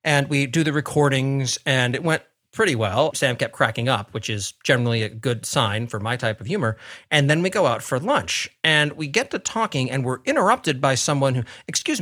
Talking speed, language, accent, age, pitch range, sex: 220 wpm, English, American, 40-59, 120-160 Hz, male